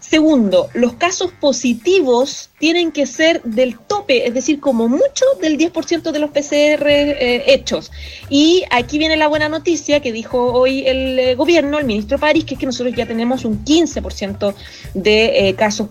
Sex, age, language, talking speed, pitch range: female, 30-49, Spanish, 175 wpm, 225-285 Hz